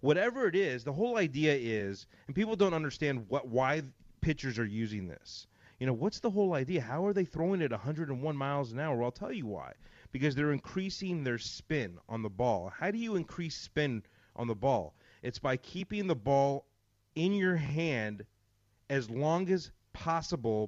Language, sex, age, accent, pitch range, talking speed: English, male, 30-49, American, 115-160 Hz, 190 wpm